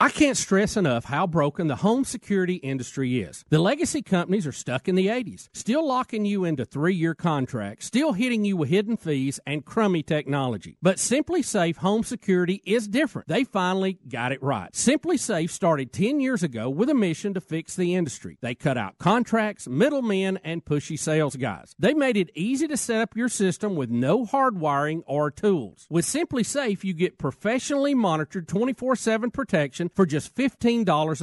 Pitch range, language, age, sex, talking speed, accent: 150-230 Hz, English, 40-59, male, 185 wpm, American